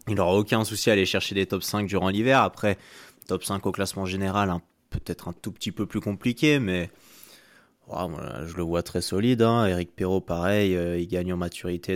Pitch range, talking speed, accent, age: 90-100 Hz, 215 wpm, French, 20-39